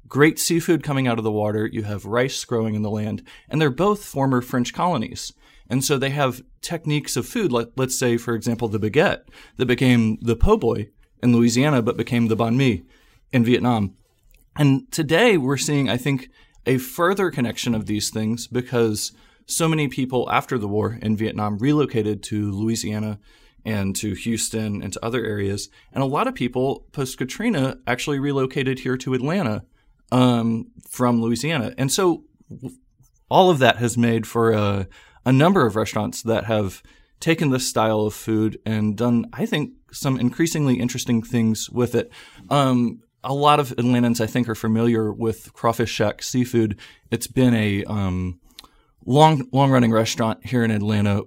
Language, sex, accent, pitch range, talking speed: English, male, American, 110-135 Hz, 170 wpm